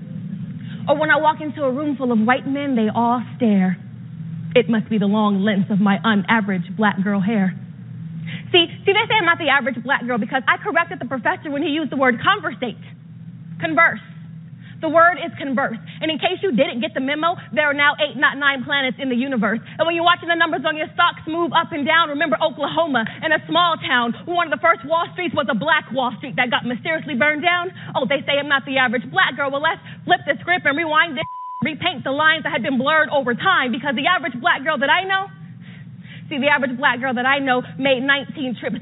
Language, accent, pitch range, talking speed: English, American, 225-325 Hz, 235 wpm